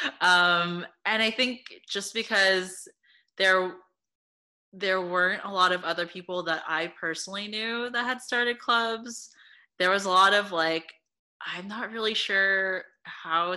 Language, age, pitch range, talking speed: English, 20-39, 165-210 Hz, 145 wpm